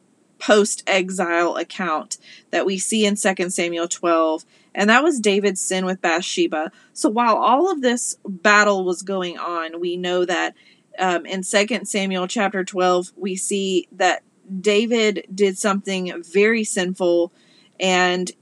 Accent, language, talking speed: American, English, 140 wpm